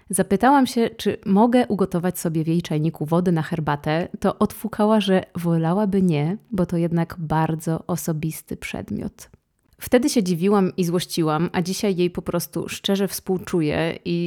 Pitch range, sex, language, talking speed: 165-195 Hz, female, Polish, 150 wpm